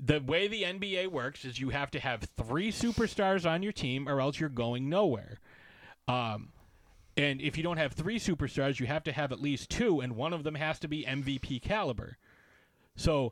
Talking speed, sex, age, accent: 205 wpm, male, 30-49, American